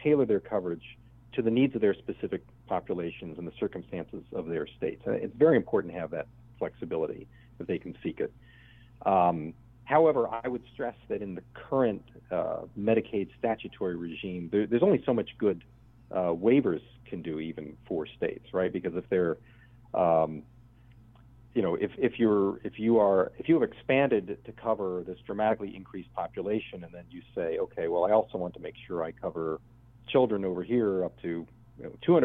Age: 40-59